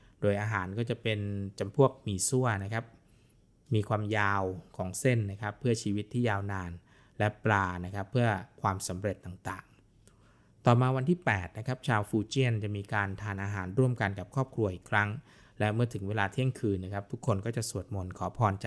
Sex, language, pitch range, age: male, Thai, 100-115 Hz, 20-39